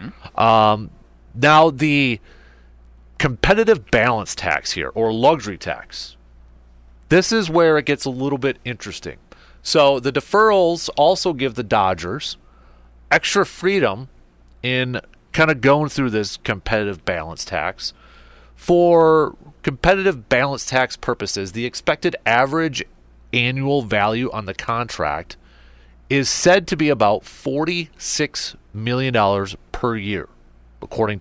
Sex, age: male, 30-49